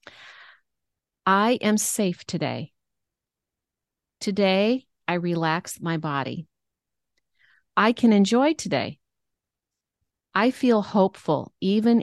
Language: English